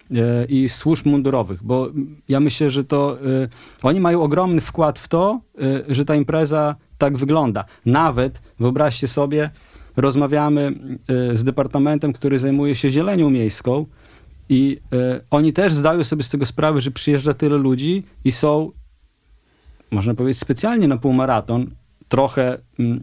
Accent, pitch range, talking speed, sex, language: native, 130-155 Hz, 130 wpm, male, Polish